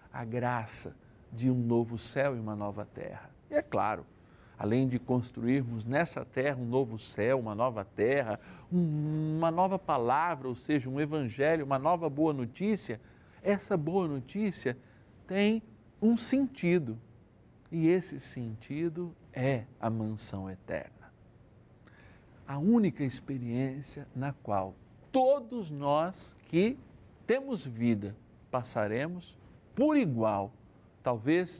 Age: 60-79